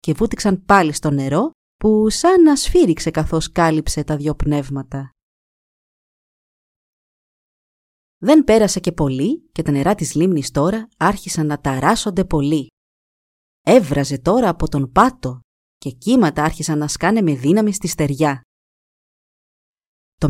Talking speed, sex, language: 125 wpm, female, Greek